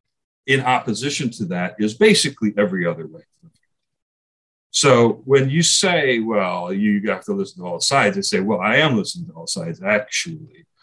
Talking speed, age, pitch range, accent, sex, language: 170 wpm, 40-59, 105-175 Hz, American, male, English